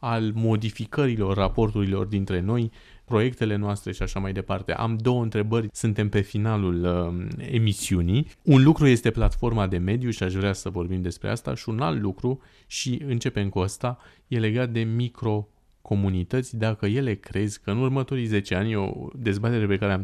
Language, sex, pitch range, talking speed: English, male, 95-115 Hz, 170 wpm